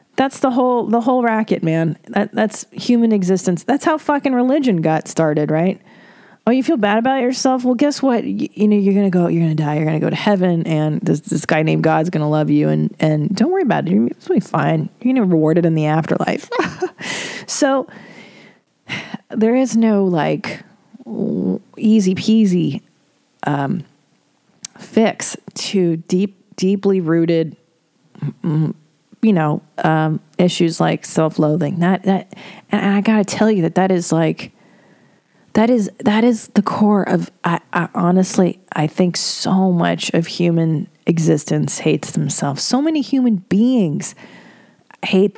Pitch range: 170-220 Hz